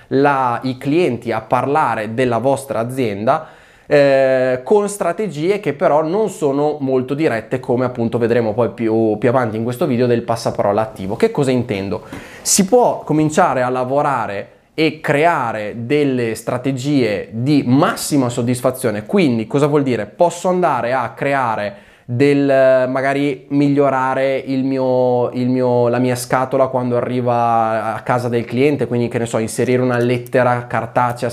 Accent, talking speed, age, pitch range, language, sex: native, 150 wpm, 20-39, 120-140 Hz, Italian, male